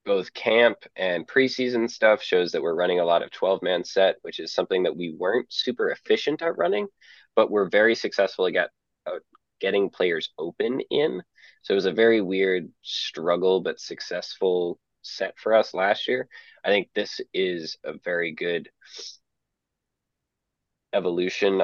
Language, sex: English, male